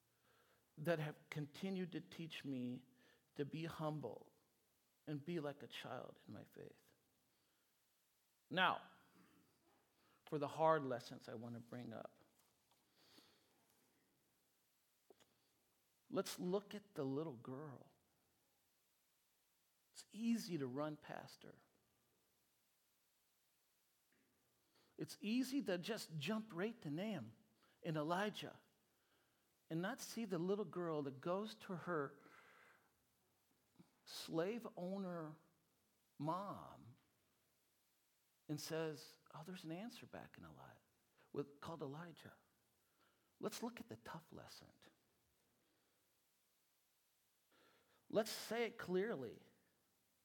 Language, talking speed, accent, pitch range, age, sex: English, 100 wpm, American, 150-205 Hz, 50-69, male